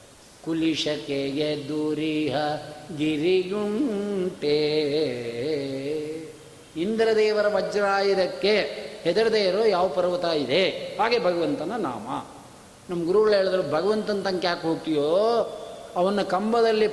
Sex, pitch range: male, 155-210 Hz